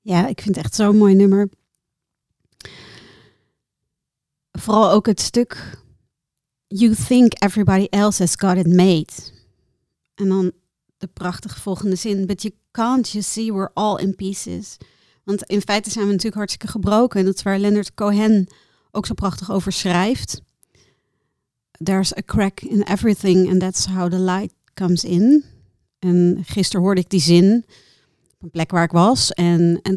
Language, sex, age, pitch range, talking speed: Dutch, female, 40-59, 180-210 Hz, 160 wpm